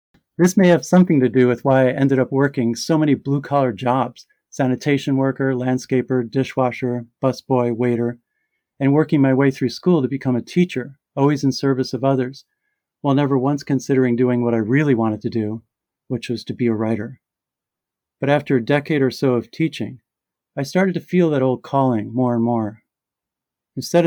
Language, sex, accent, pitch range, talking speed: English, male, American, 120-140 Hz, 180 wpm